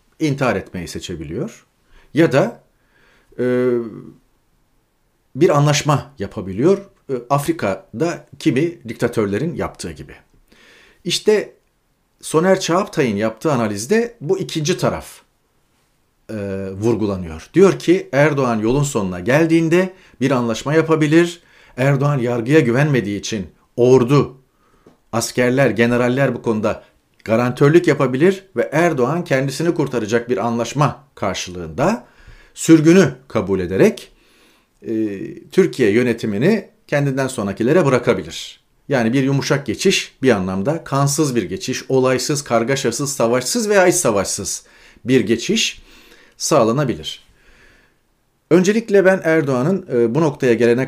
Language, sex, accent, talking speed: Turkish, male, native, 100 wpm